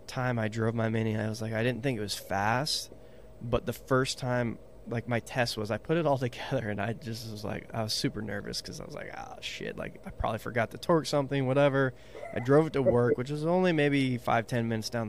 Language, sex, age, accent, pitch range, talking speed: English, male, 20-39, American, 110-125 Hz, 245 wpm